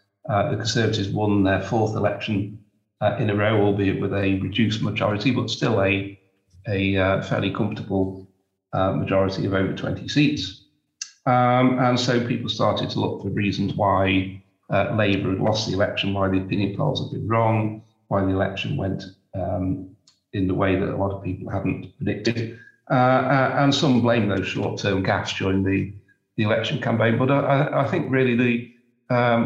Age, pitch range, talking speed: 40-59, 100-120 Hz, 175 wpm